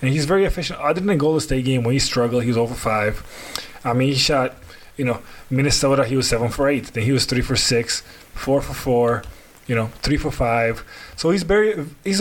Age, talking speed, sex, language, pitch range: 20-39, 230 wpm, male, English, 115-145 Hz